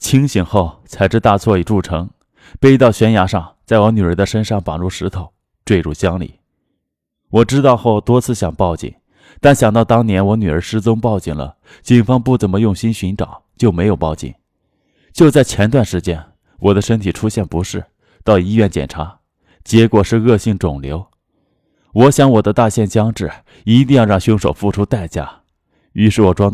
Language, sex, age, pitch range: Chinese, male, 20-39, 90-115 Hz